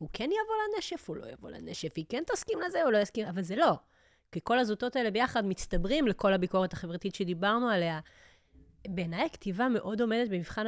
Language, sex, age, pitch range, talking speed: Hebrew, female, 30-49, 180-230 Hz, 190 wpm